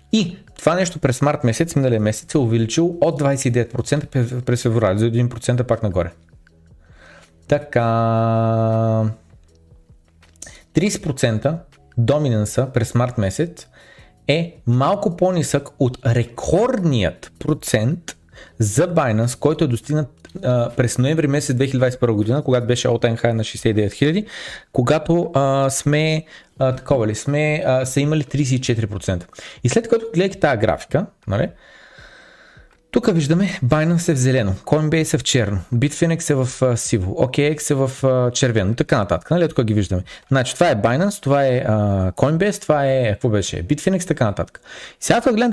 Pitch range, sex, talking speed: 115-155 Hz, male, 140 wpm